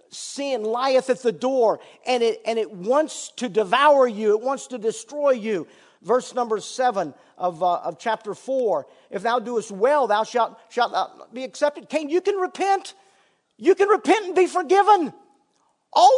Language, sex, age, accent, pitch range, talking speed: English, male, 50-69, American, 210-295 Hz, 175 wpm